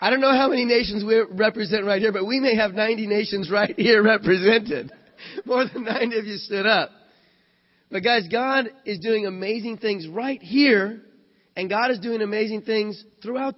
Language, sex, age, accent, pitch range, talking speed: English, male, 30-49, American, 160-215 Hz, 185 wpm